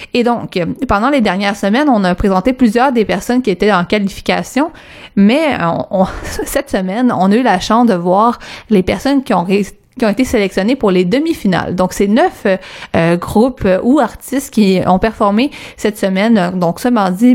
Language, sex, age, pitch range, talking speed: French, female, 30-49, 190-240 Hz, 180 wpm